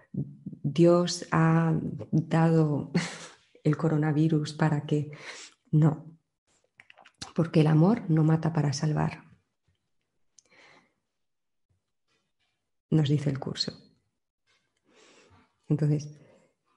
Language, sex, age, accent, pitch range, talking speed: Spanish, female, 30-49, Spanish, 150-190 Hz, 70 wpm